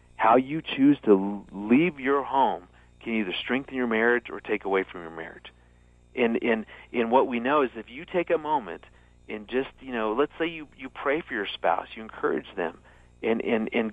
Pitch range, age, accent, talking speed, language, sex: 80-135 Hz, 40-59, American, 205 wpm, English, male